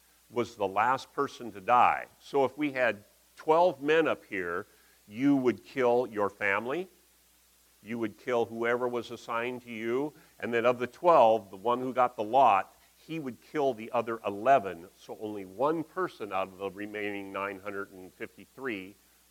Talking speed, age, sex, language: 165 wpm, 50-69, male, English